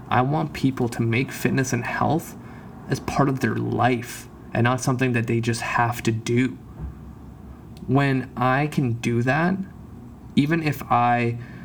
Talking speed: 155 wpm